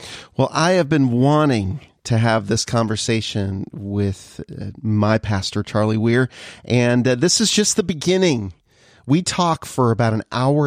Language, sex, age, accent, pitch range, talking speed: English, male, 40-59, American, 115-150 Hz, 145 wpm